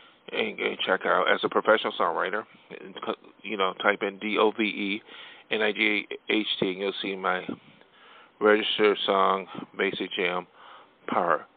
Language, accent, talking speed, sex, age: English, American, 120 wpm, male, 40-59